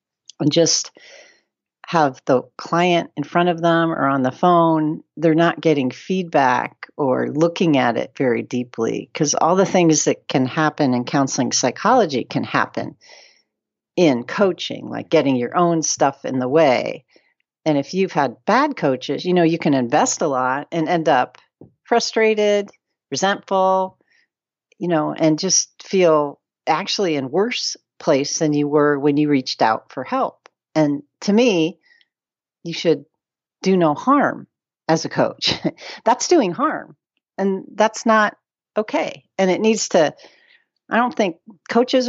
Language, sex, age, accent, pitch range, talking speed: English, female, 40-59, American, 145-190 Hz, 155 wpm